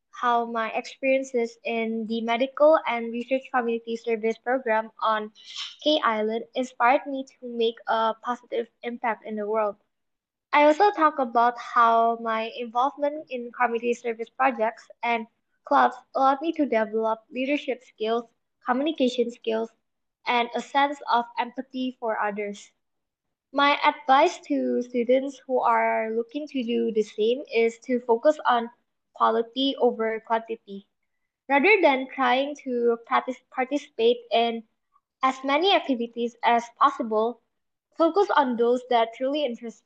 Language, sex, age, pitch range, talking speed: English, female, 10-29, 230-275 Hz, 130 wpm